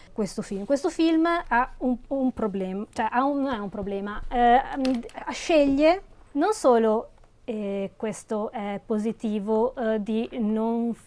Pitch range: 200-245 Hz